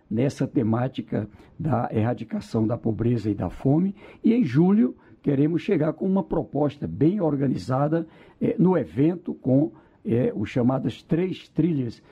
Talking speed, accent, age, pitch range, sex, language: 140 wpm, Brazilian, 60-79, 125-165 Hz, male, Portuguese